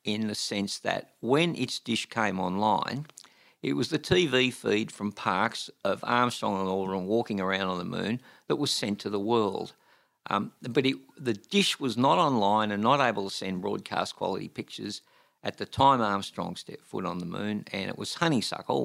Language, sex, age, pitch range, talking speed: English, male, 50-69, 100-125 Hz, 190 wpm